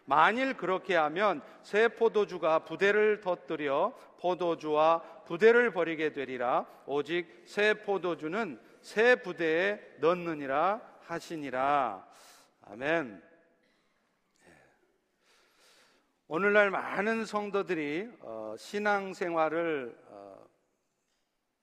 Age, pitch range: 50-69, 165-220 Hz